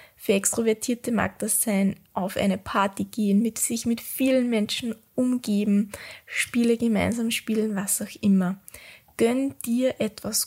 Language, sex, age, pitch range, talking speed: German, female, 20-39, 200-240 Hz, 140 wpm